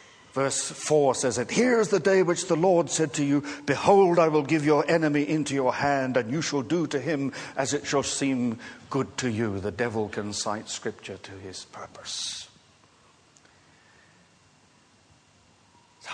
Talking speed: 165 wpm